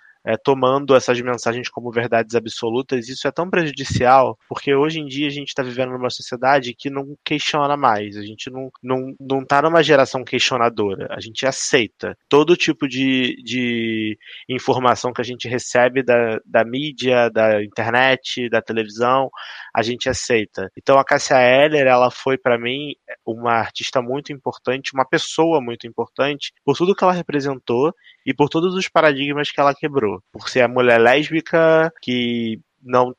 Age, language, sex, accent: 20-39, Portuguese, male, Brazilian